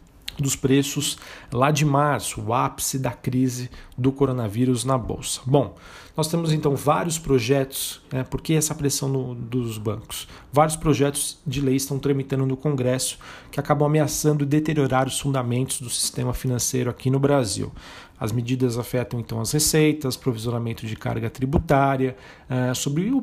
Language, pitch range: Portuguese, 130-155 Hz